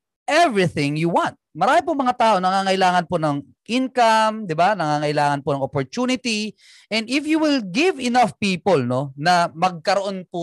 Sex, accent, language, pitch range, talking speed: male, native, Filipino, 155-230 Hz, 160 wpm